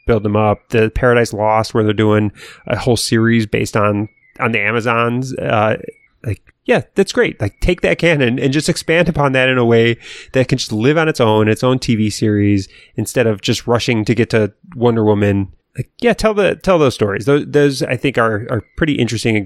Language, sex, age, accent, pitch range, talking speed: English, male, 30-49, American, 105-130 Hz, 215 wpm